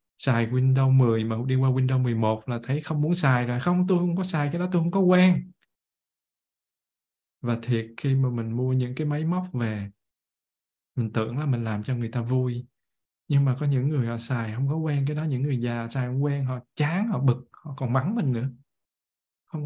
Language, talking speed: Vietnamese, 225 wpm